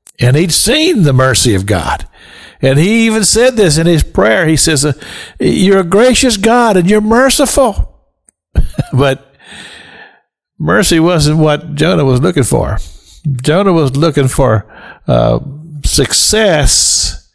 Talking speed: 130 wpm